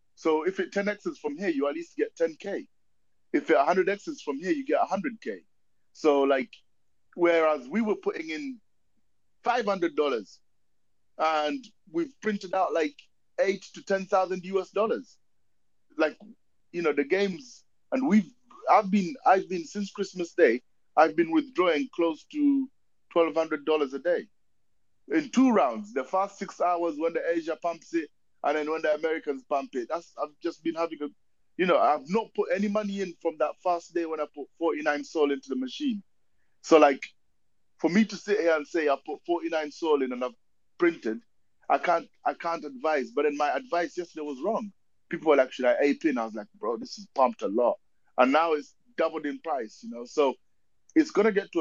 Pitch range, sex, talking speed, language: 150-210 Hz, male, 190 wpm, English